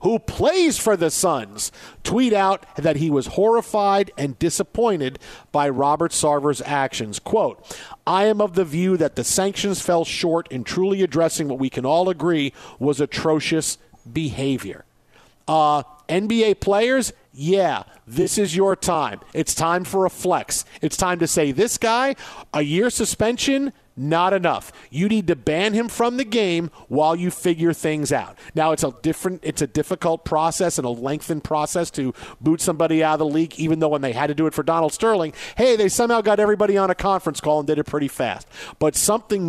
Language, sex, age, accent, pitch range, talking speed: English, male, 50-69, American, 150-195 Hz, 185 wpm